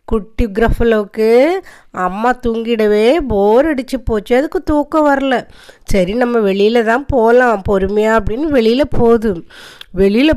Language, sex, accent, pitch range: Tamil, female, native, 205-270 Hz